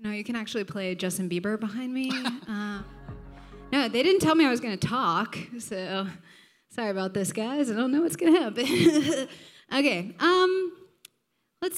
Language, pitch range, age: English, 200-250 Hz, 10-29